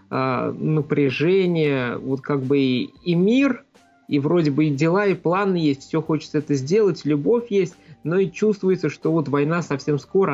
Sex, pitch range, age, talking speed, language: male, 135-160 Hz, 20-39, 170 wpm, Russian